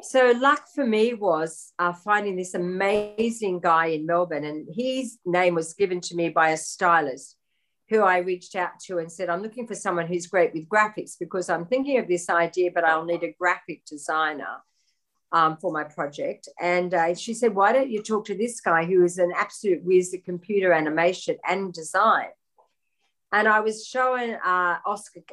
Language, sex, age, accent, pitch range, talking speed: English, female, 50-69, Australian, 170-220 Hz, 190 wpm